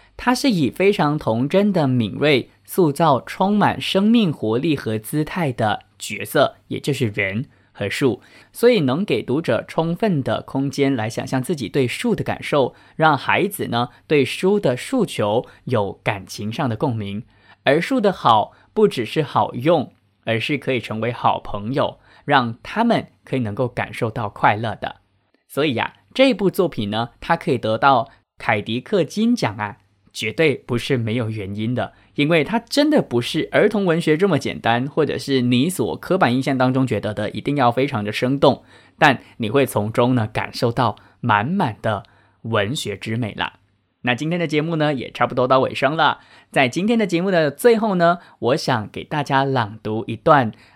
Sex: male